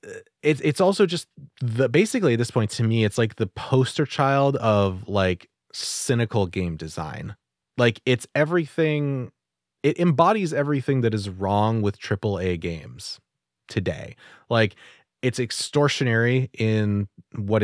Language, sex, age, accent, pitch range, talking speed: English, male, 30-49, American, 95-135 Hz, 135 wpm